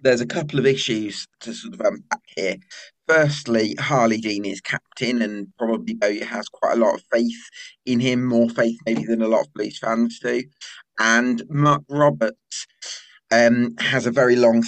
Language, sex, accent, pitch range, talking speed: English, male, British, 110-130 Hz, 175 wpm